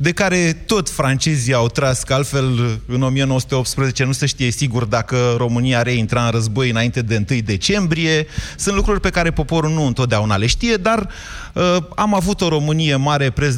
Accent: native